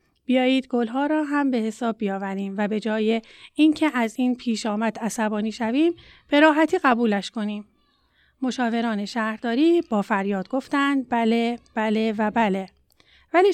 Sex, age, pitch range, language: female, 30-49, 215-270 Hz, Persian